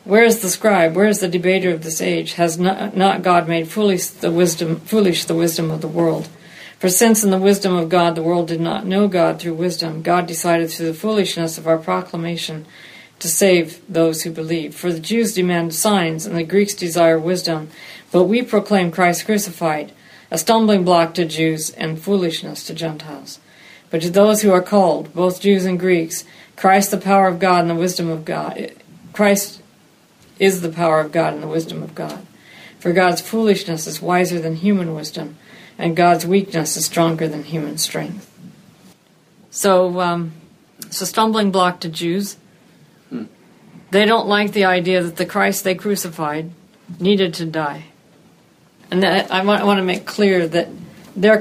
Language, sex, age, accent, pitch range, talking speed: English, female, 50-69, American, 165-195 Hz, 180 wpm